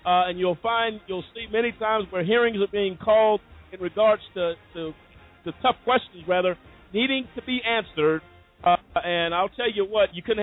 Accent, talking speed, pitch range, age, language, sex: American, 195 wpm, 165-215 Hz, 50-69, English, male